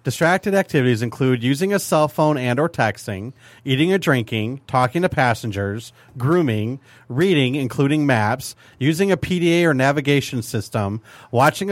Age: 40-59